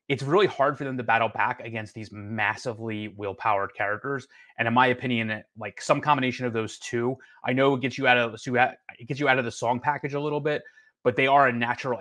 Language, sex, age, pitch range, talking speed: English, male, 30-49, 110-125 Hz, 210 wpm